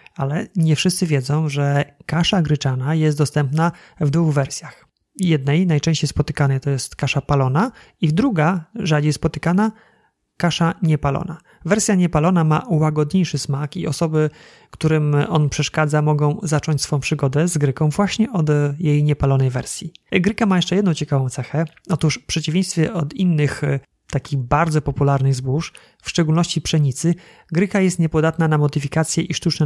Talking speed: 145 wpm